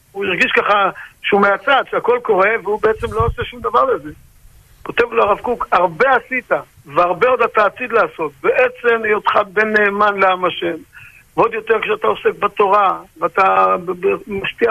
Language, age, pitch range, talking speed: Hebrew, 50-69, 195-255 Hz, 155 wpm